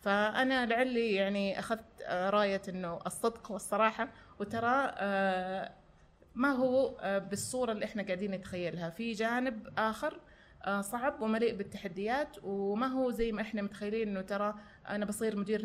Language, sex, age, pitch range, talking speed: Arabic, female, 30-49, 200-255 Hz, 125 wpm